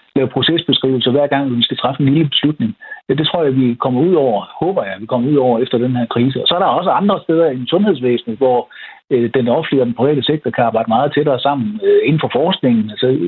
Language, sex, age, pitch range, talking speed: Danish, male, 60-79, 125-170 Hz, 240 wpm